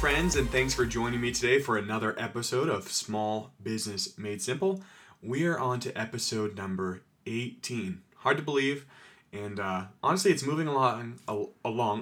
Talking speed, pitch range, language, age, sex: 160 wpm, 110-140 Hz, English, 20-39, male